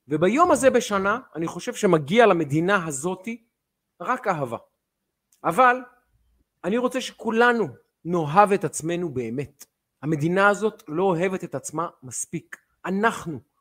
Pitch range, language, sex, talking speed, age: 165-225 Hz, Hebrew, male, 115 wpm, 40-59